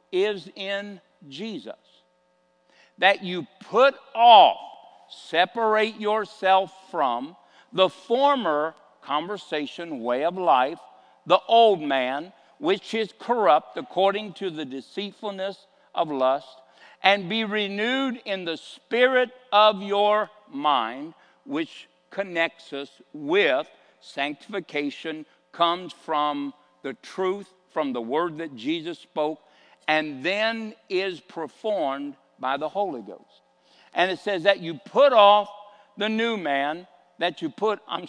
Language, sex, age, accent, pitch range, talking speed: English, male, 60-79, American, 155-215 Hz, 115 wpm